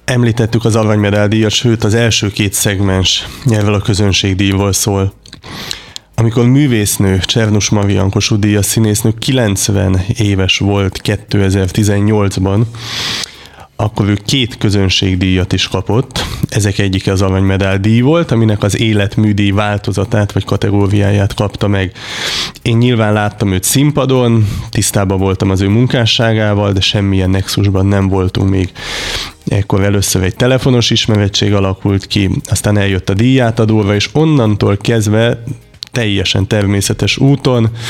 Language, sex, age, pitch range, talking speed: Hungarian, male, 20-39, 100-115 Hz, 120 wpm